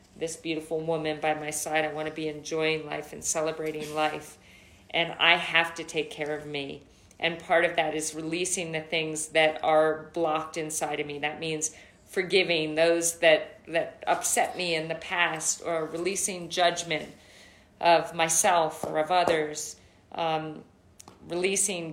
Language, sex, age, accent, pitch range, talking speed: English, female, 40-59, American, 155-175 Hz, 160 wpm